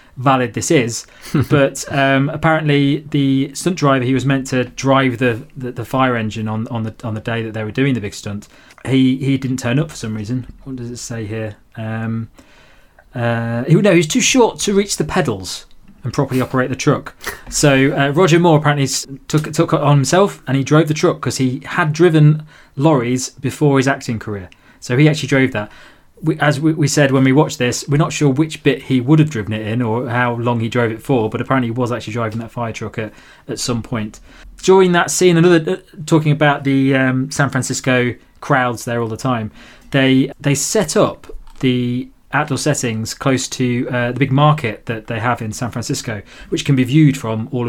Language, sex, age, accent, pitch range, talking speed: English, male, 20-39, British, 120-145 Hz, 220 wpm